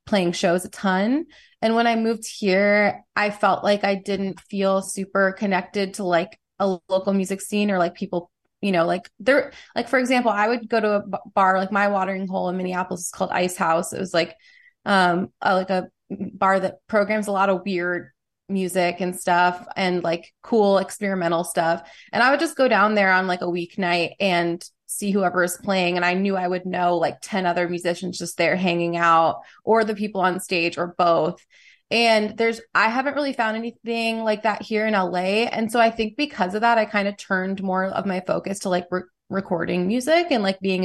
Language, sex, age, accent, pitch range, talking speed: English, female, 20-39, American, 180-210 Hz, 210 wpm